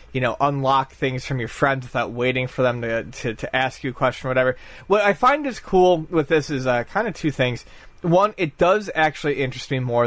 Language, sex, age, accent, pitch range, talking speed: English, male, 30-49, American, 120-160 Hz, 240 wpm